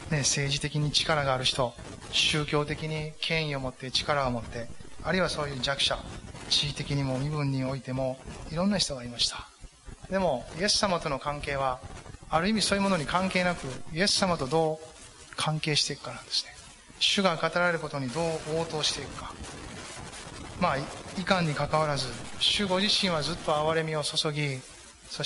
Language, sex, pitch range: Japanese, male, 135-165 Hz